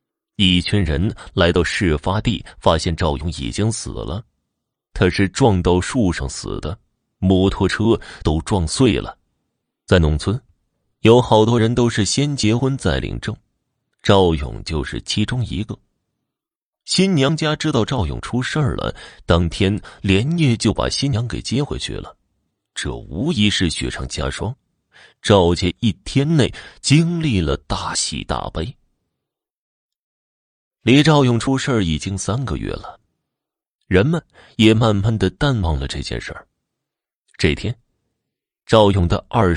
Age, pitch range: 30-49, 85-120 Hz